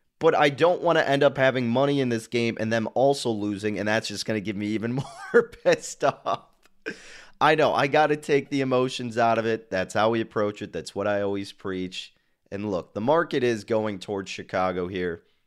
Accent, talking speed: American, 220 wpm